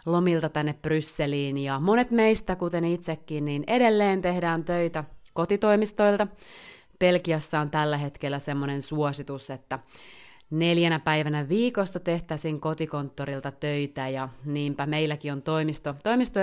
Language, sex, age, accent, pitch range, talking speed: Finnish, female, 30-49, native, 145-175 Hz, 115 wpm